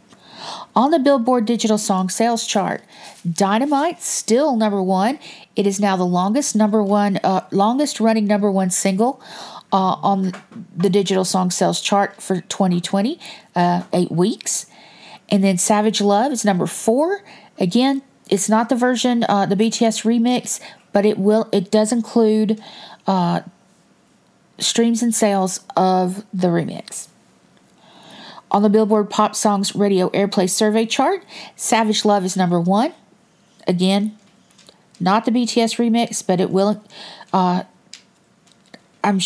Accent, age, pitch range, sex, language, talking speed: American, 40-59, 195-230 Hz, female, English, 135 wpm